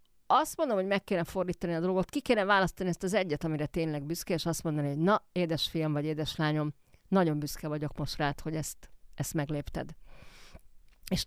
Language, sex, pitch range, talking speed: Hungarian, female, 155-205 Hz, 190 wpm